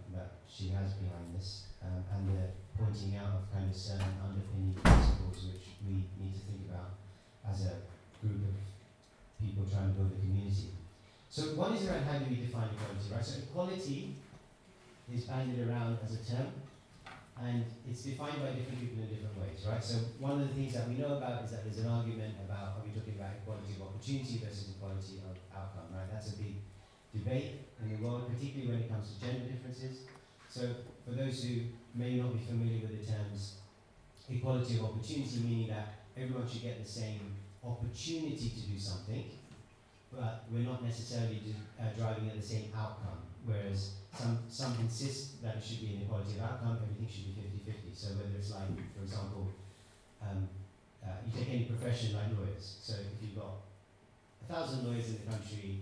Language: English